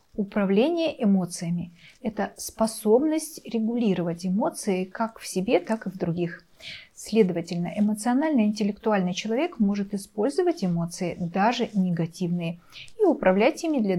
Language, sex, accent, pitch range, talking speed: Russian, female, native, 180-235 Hz, 110 wpm